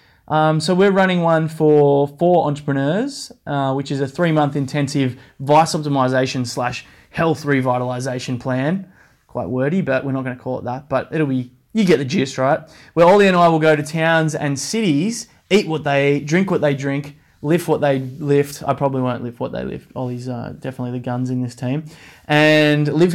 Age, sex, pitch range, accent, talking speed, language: 20-39, male, 130-155 Hz, Australian, 200 wpm, English